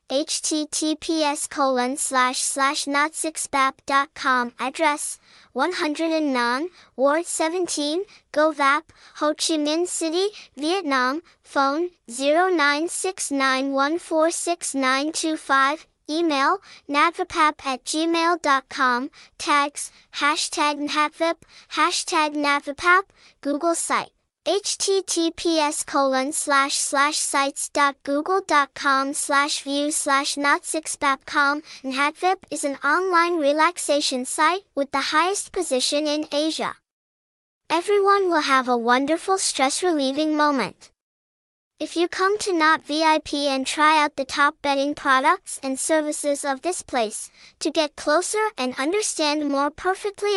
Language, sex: English, male